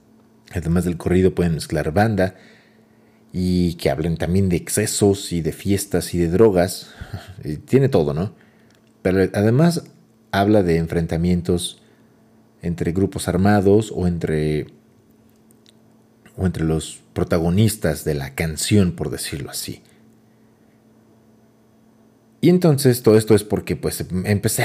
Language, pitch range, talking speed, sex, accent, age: Spanish, 90-110 Hz, 120 wpm, male, Mexican, 40-59